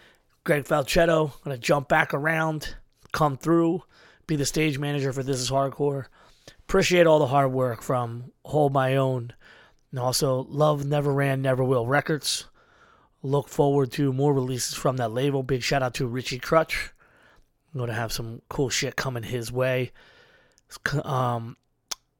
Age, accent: 20-39, American